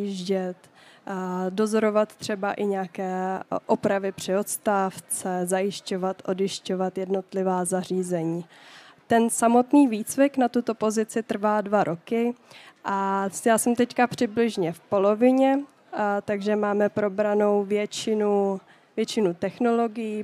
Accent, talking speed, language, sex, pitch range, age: native, 100 wpm, Czech, female, 195-225 Hz, 20-39